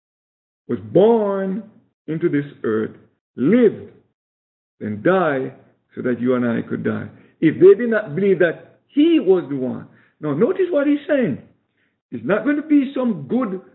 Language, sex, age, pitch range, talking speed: English, male, 50-69, 140-230 Hz, 160 wpm